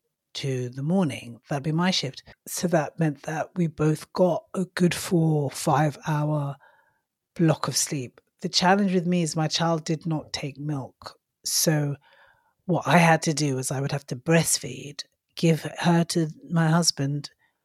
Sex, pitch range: female, 140-165 Hz